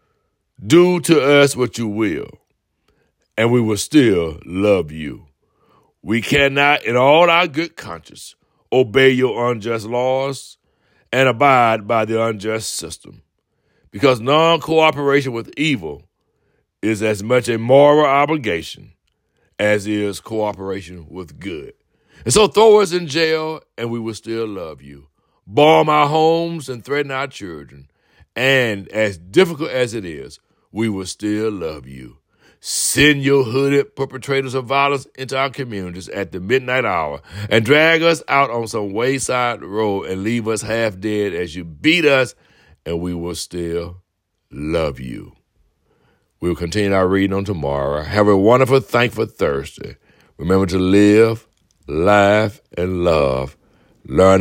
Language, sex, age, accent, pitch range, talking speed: English, male, 60-79, American, 95-140 Hz, 140 wpm